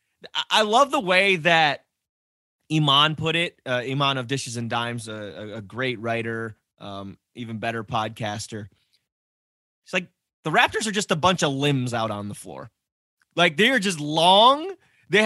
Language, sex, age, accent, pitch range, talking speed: English, male, 20-39, American, 115-170 Hz, 165 wpm